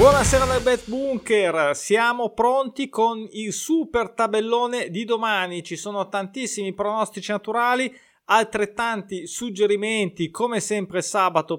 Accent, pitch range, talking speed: native, 185-230 Hz, 115 wpm